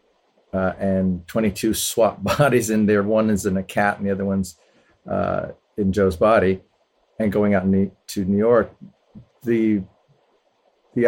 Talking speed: 155 wpm